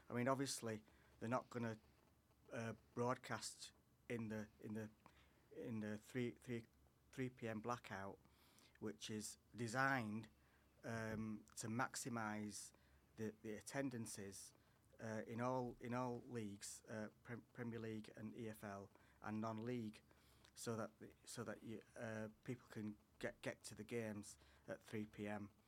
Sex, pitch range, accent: male, 105-120 Hz, British